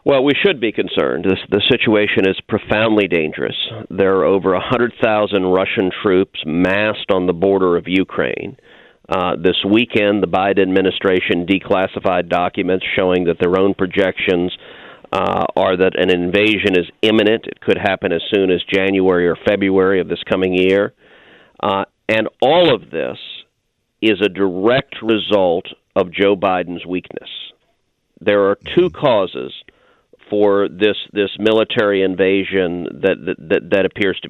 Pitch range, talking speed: 95-110 Hz, 145 wpm